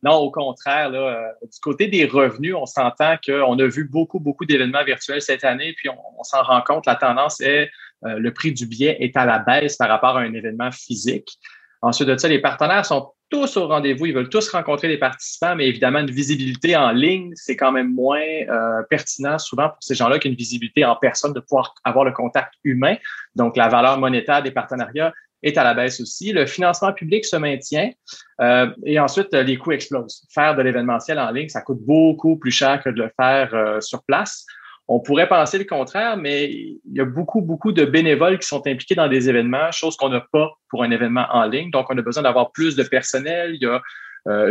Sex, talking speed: male, 225 wpm